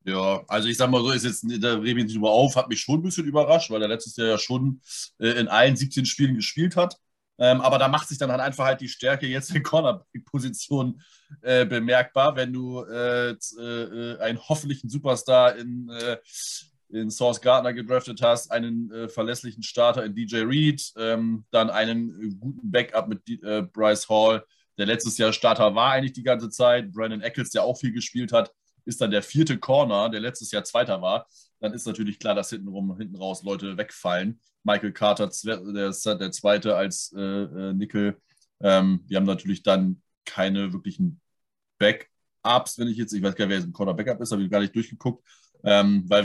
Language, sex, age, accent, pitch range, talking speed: German, male, 20-39, German, 105-125 Hz, 185 wpm